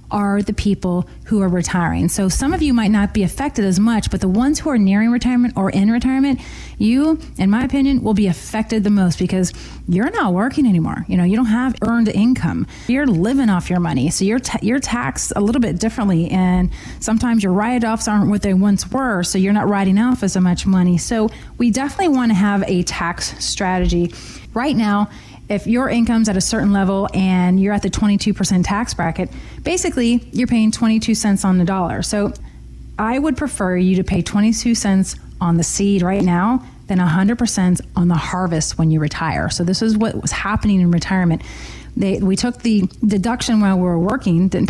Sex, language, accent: female, English, American